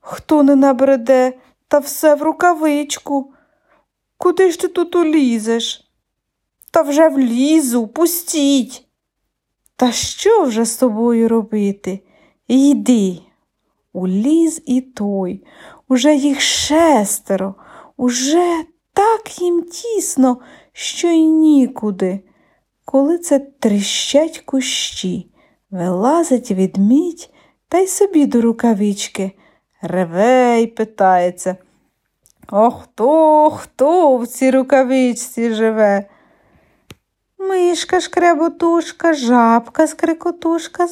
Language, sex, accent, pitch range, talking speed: Ukrainian, female, native, 220-320 Hz, 85 wpm